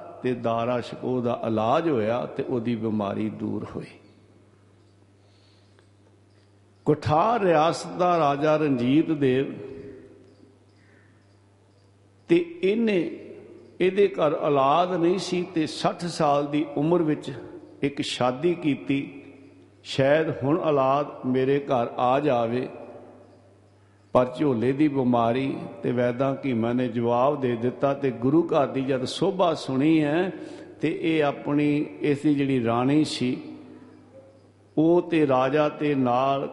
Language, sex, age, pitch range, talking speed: Punjabi, male, 60-79, 115-150 Hz, 115 wpm